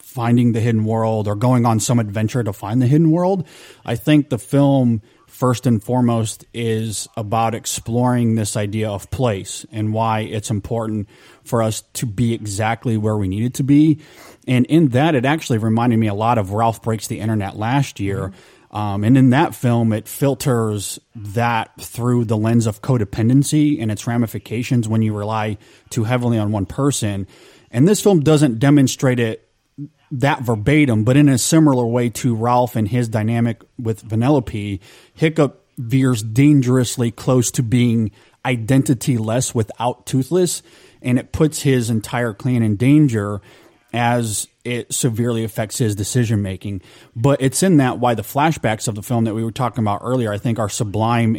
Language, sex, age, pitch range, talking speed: English, male, 30-49, 110-130 Hz, 170 wpm